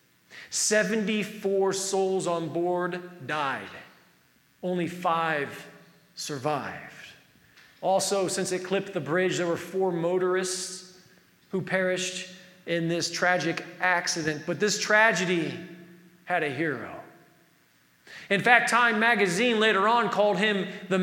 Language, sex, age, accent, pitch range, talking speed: English, male, 40-59, American, 175-200 Hz, 110 wpm